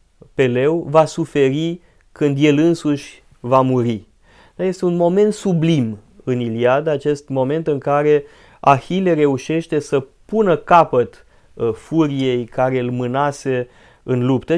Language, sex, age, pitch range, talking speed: Romanian, male, 30-49, 125-155 Hz, 130 wpm